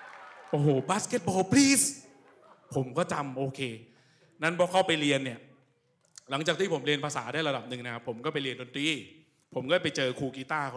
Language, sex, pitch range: Thai, male, 130-195 Hz